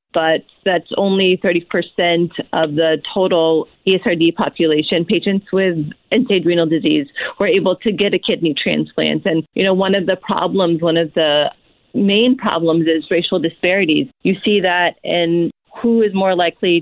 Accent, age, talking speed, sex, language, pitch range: American, 40-59, 155 wpm, female, English, 165-195 Hz